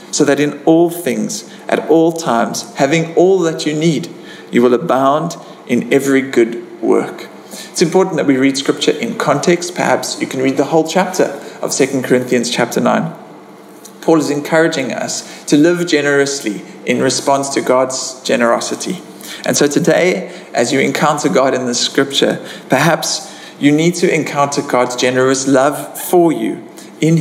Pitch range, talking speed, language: 130-165 Hz, 160 wpm, English